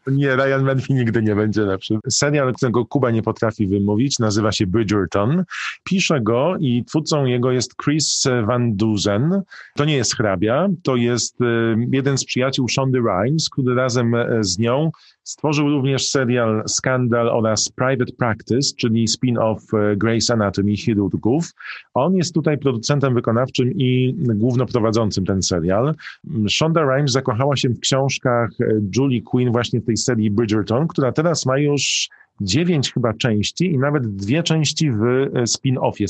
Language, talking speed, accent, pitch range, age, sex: Polish, 145 wpm, native, 115-140 Hz, 40-59, male